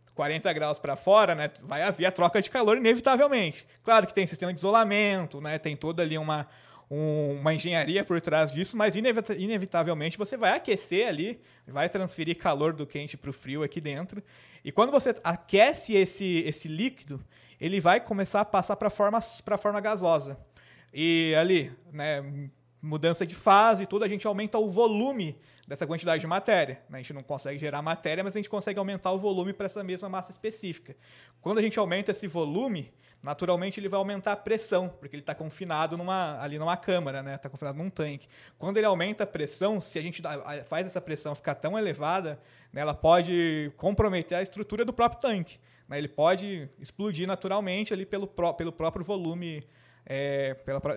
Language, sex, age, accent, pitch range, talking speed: Portuguese, male, 20-39, Brazilian, 150-200 Hz, 185 wpm